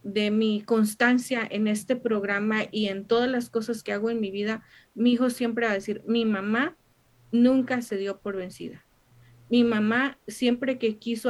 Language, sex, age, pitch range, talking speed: Spanish, female, 40-59, 210-245 Hz, 180 wpm